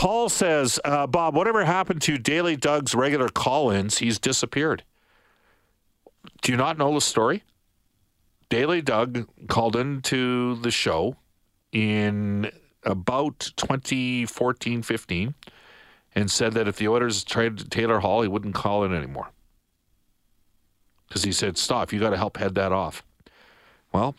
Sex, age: male, 50-69